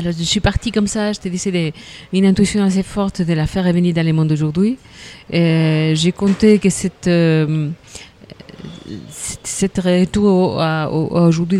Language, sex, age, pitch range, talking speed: French, female, 40-59, 175-210 Hz, 150 wpm